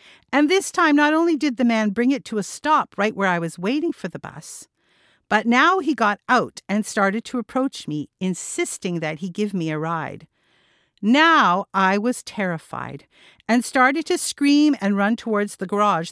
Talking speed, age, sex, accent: 190 wpm, 50-69, female, American